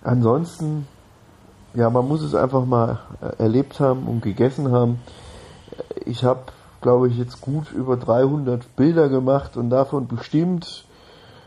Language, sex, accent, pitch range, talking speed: German, male, German, 115-135 Hz, 130 wpm